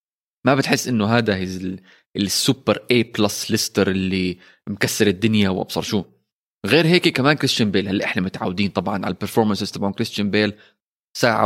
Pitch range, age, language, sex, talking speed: 105-135 Hz, 20-39, Arabic, male, 145 wpm